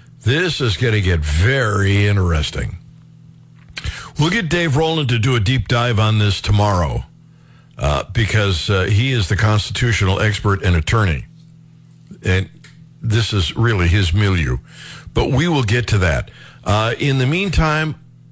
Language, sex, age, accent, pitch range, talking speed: English, male, 60-79, American, 105-140 Hz, 145 wpm